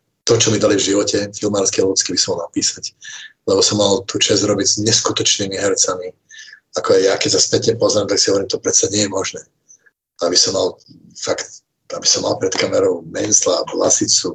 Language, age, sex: Czech, 50-69, male